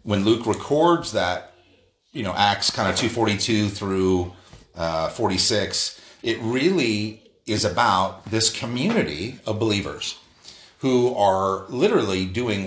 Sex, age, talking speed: male, 40-59, 120 wpm